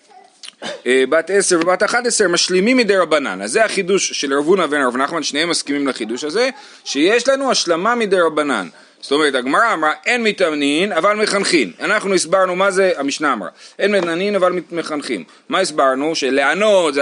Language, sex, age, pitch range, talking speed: Hebrew, male, 30-49, 140-215 Hz, 165 wpm